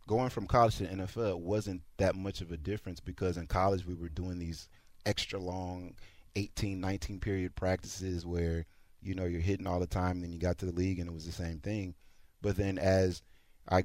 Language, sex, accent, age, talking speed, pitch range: English, male, American, 30-49, 210 wpm, 85-95 Hz